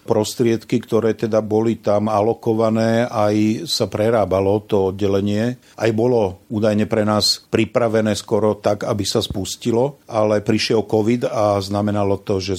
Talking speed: 140 wpm